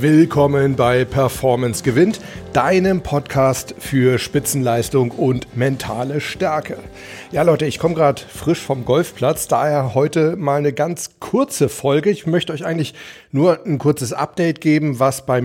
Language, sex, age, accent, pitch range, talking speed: German, male, 40-59, German, 130-155 Hz, 145 wpm